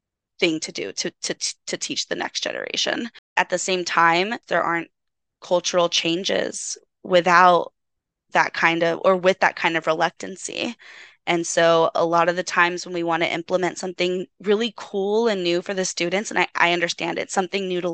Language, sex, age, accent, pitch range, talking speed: English, female, 10-29, American, 170-200 Hz, 185 wpm